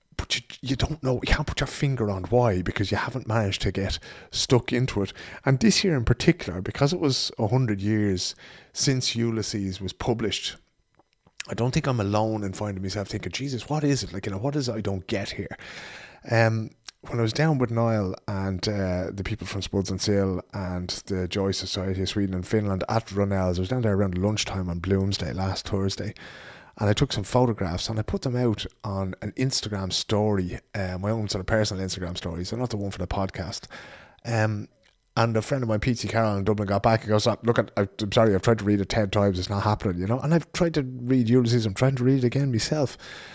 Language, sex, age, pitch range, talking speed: English, male, 30-49, 95-125 Hz, 230 wpm